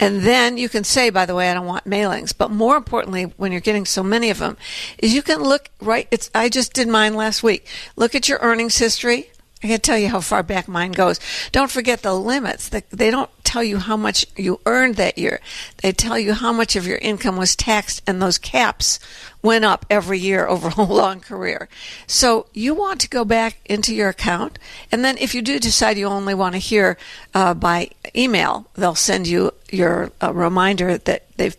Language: English